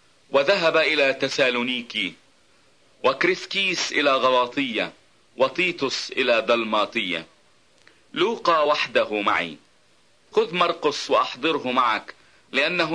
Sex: male